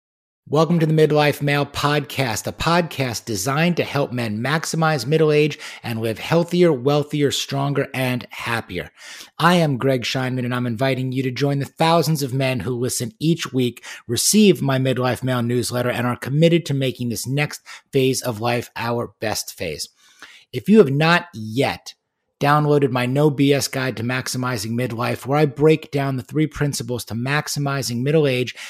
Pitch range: 125-150 Hz